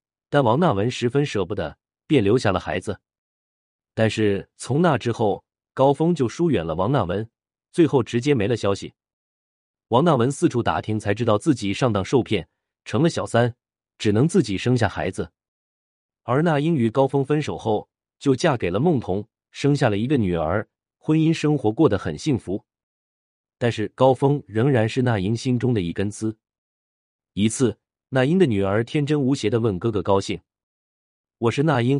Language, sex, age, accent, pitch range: Chinese, male, 30-49, native, 95-135 Hz